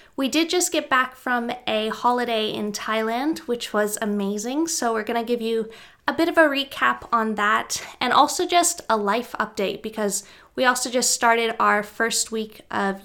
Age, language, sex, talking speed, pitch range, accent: 20-39, English, female, 190 wpm, 215-280 Hz, American